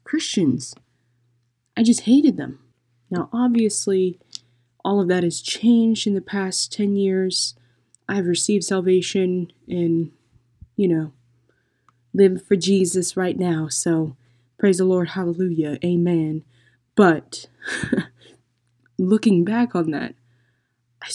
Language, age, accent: English, 20-39, American